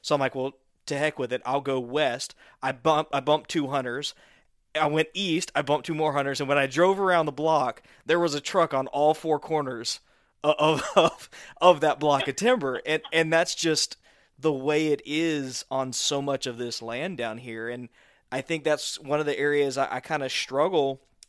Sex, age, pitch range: male, 20-39, 130-150 Hz